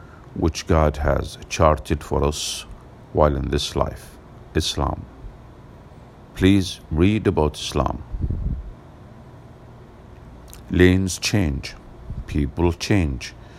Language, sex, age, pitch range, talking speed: English, male, 50-69, 75-95 Hz, 85 wpm